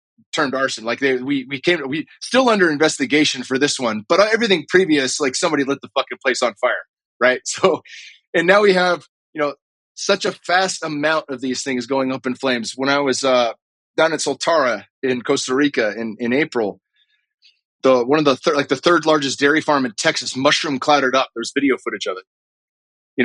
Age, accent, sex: 30-49, American, male